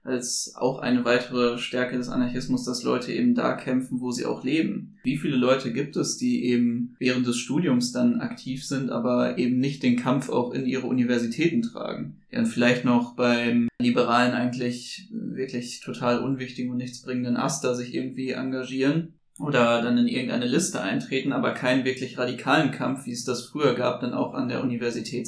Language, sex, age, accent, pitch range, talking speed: German, male, 20-39, German, 120-130 Hz, 180 wpm